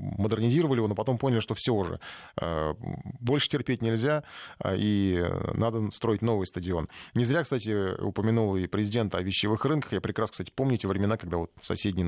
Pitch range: 100-130 Hz